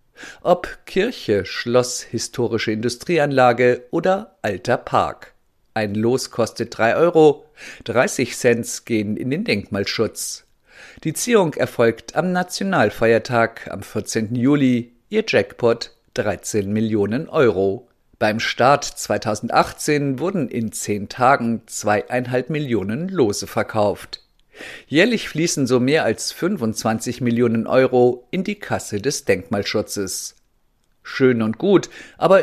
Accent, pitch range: German, 110-140 Hz